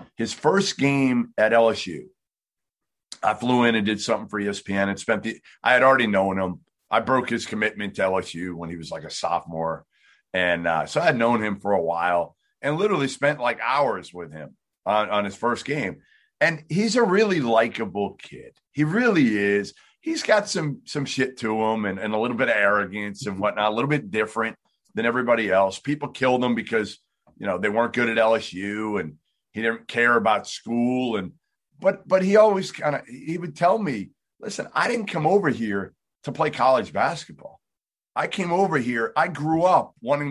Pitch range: 100-145 Hz